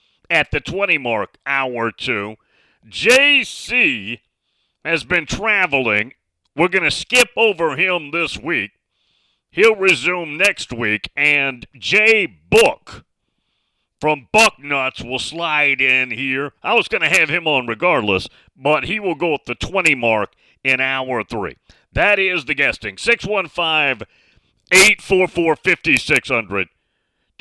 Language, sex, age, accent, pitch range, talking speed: English, male, 40-59, American, 115-190 Hz, 120 wpm